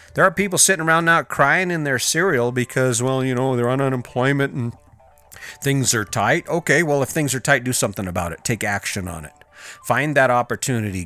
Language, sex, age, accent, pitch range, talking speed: English, male, 40-59, American, 105-135 Hz, 205 wpm